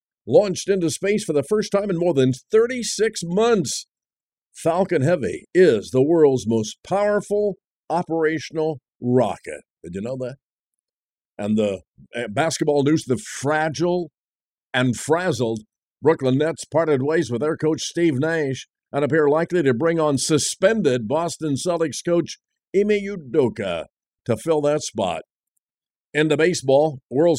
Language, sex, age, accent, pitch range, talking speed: English, male, 50-69, American, 130-175 Hz, 135 wpm